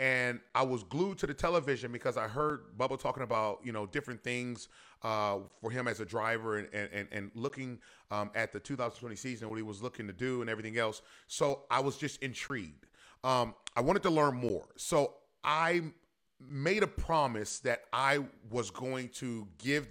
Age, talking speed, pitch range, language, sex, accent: 30-49, 190 wpm, 110-145 Hz, English, male, American